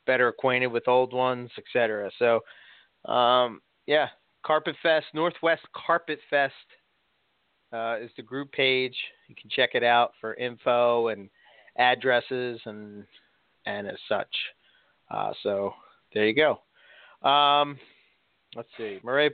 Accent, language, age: American, English, 30-49